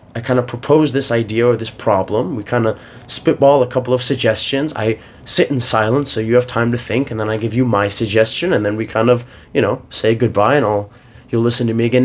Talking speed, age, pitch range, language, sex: 250 wpm, 20-39, 115-140 Hz, English, male